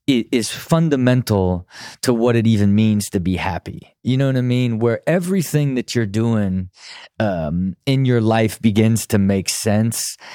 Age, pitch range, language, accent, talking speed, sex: 30-49, 100-125 Hz, English, American, 170 wpm, male